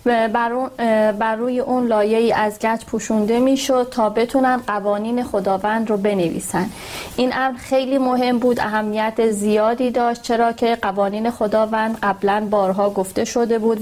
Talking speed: 145 wpm